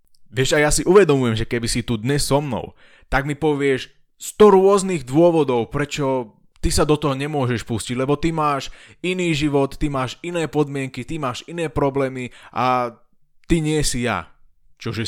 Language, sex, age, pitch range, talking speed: Slovak, male, 20-39, 115-145 Hz, 175 wpm